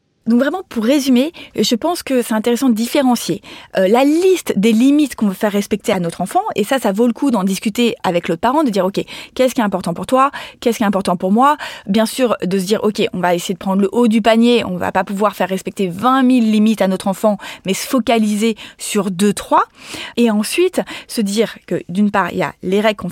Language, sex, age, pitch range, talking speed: French, female, 20-39, 195-265 Hz, 250 wpm